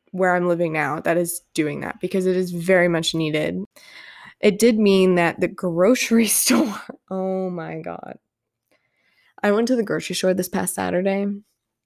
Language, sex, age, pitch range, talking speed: English, female, 20-39, 175-220 Hz, 165 wpm